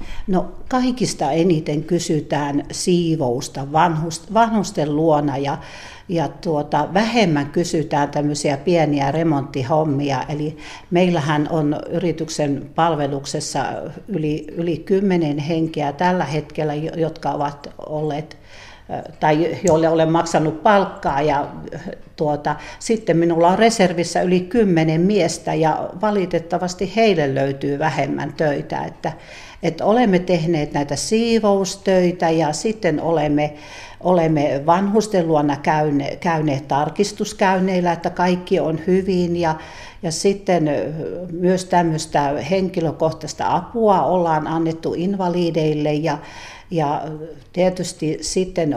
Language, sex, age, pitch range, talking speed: Finnish, female, 60-79, 150-180 Hz, 100 wpm